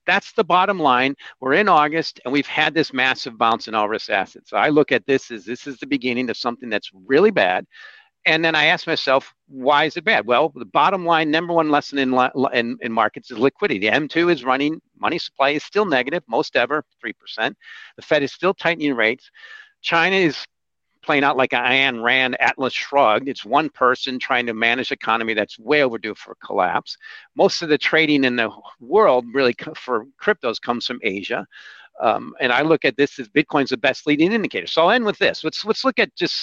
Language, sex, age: English, male, 50-69